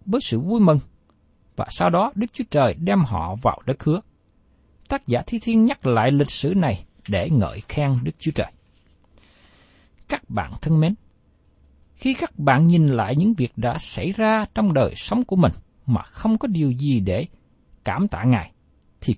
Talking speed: 185 wpm